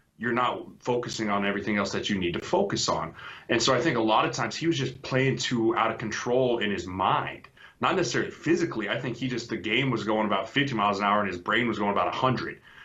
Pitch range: 105-125 Hz